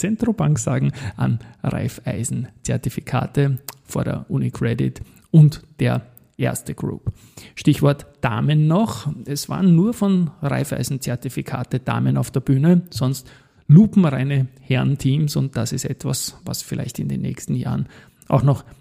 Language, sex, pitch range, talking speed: German, male, 130-155 Hz, 120 wpm